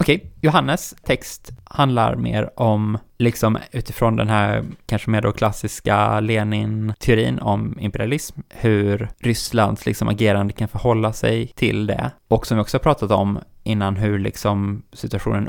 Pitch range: 100-115 Hz